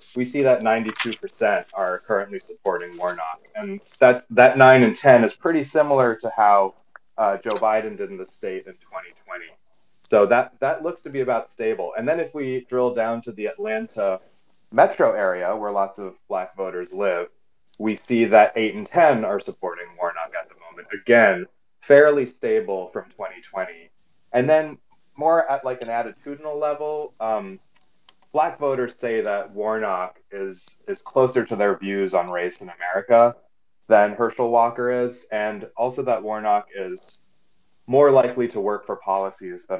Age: 30-49